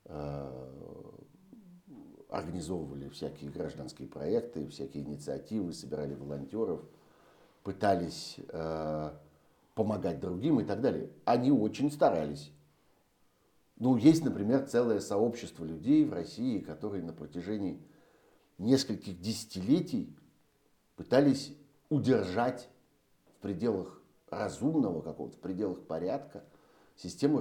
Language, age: Russian, 60-79